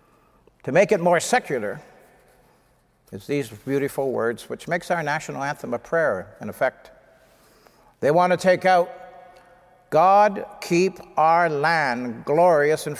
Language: English